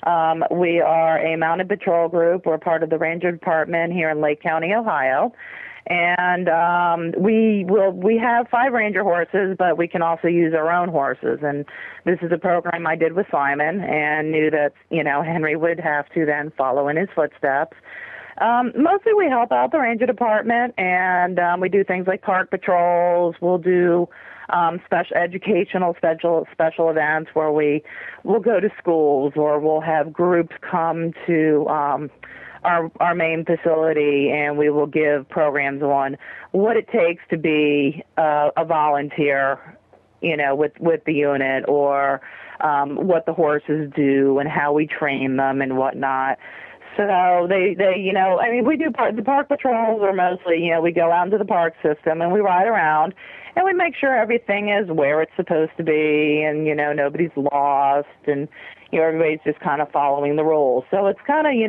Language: English